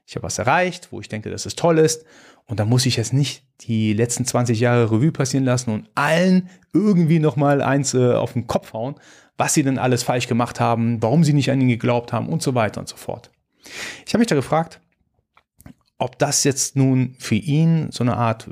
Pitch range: 115-145 Hz